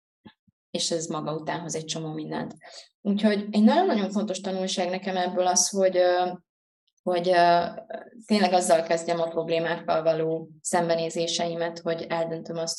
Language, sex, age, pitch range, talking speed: Hungarian, female, 20-39, 165-185 Hz, 130 wpm